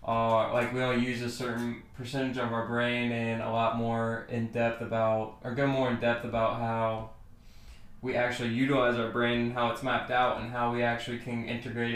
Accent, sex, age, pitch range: American, male, 20-39, 115-125 Hz